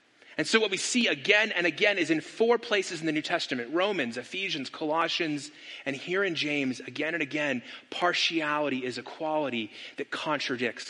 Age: 30-49